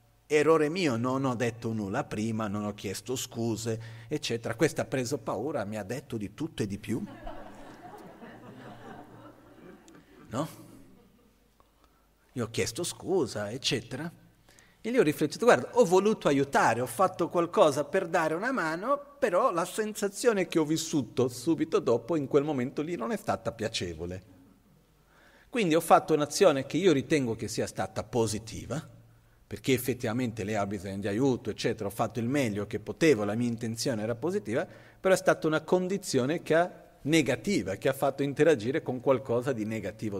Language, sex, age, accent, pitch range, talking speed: Italian, male, 40-59, native, 110-160 Hz, 160 wpm